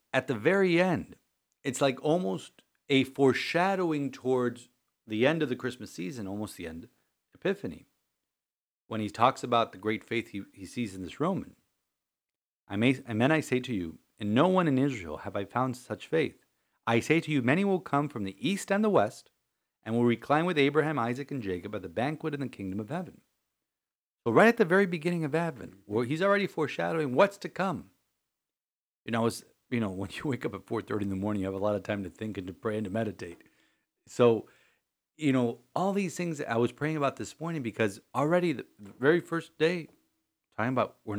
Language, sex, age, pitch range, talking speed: English, male, 40-59, 110-155 Hz, 215 wpm